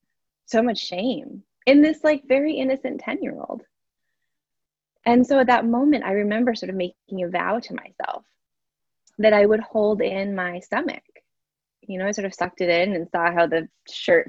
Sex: female